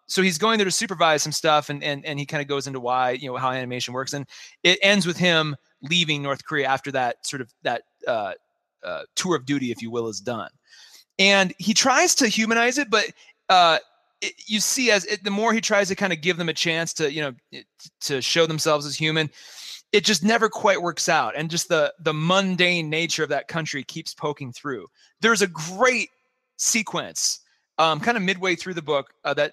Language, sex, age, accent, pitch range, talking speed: English, male, 30-49, American, 150-200 Hz, 220 wpm